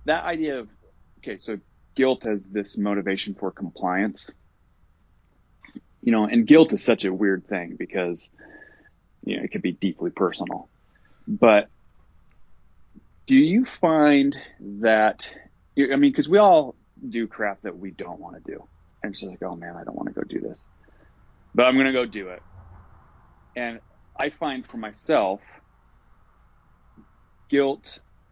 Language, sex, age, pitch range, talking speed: English, male, 30-49, 90-115 Hz, 155 wpm